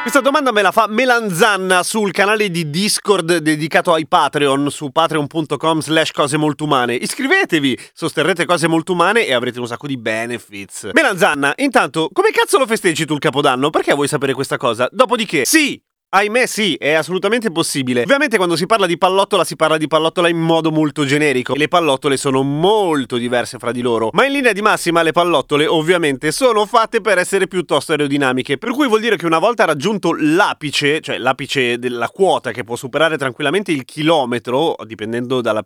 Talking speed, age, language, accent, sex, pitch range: 185 wpm, 30-49, Italian, native, male, 145-210 Hz